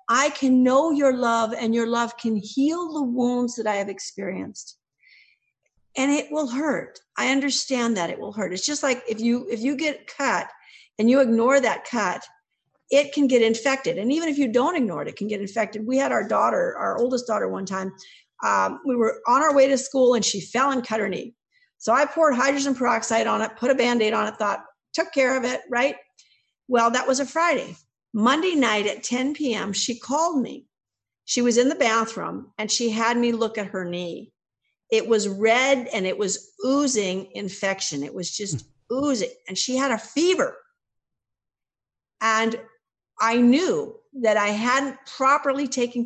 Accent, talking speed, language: American, 195 wpm, English